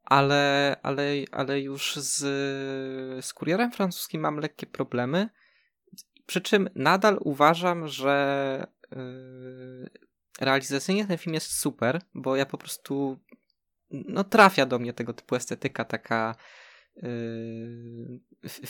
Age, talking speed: 20-39, 110 wpm